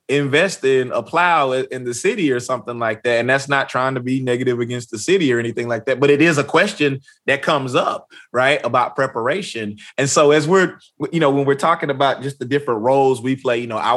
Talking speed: 235 wpm